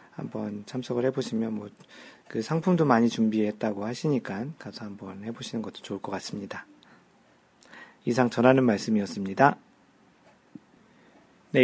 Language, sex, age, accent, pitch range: Korean, male, 40-59, native, 115-140 Hz